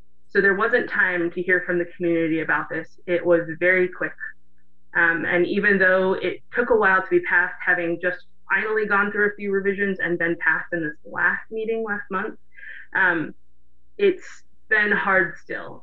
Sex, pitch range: female, 170-195 Hz